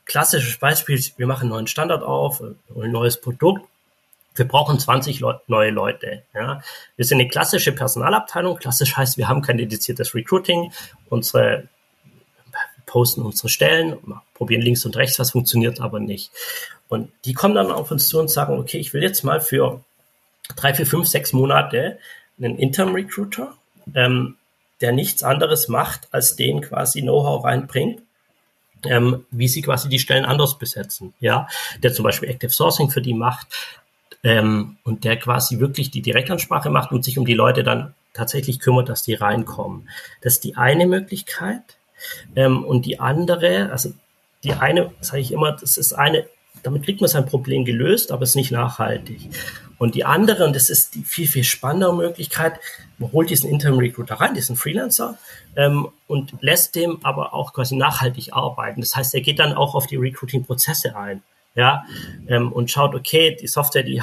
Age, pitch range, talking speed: 30-49, 120-155 Hz, 175 wpm